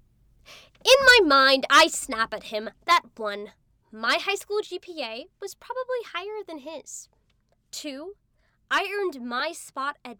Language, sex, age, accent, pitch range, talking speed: English, female, 10-29, American, 220-310 Hz, 140 wpm